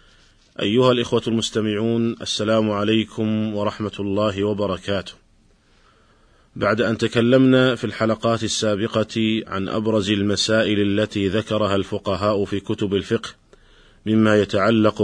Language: Arabic